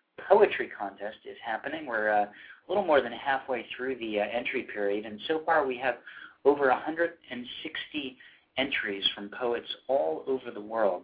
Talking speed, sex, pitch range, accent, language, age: 165 wpm, male, 105-125 Hz, American, English, 40-59